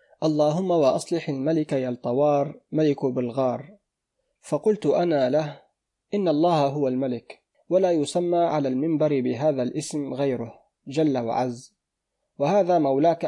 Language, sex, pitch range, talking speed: Arabic, male, 140-165 Hz, 110 wpm